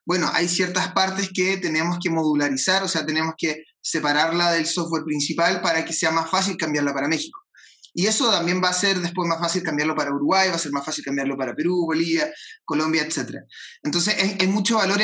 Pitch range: 160-195 Hz